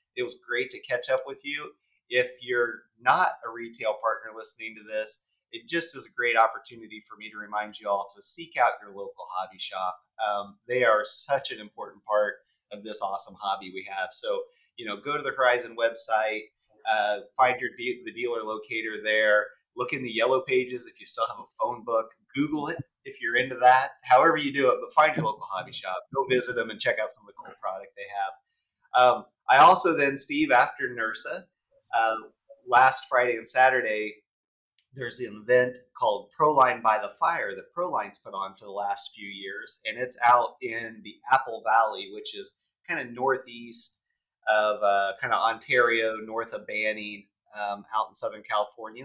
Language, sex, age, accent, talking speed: English, male, 30-49, American, 195 wpm